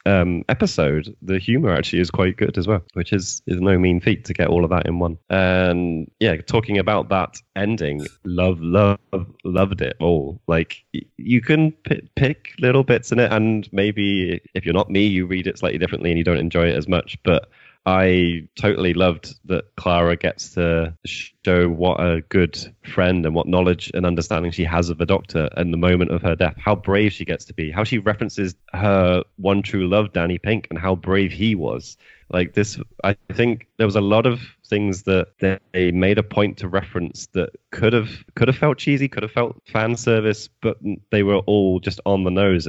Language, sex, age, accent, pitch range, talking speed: English, male, 20-39, British, 85-105 Hz, 205 wpm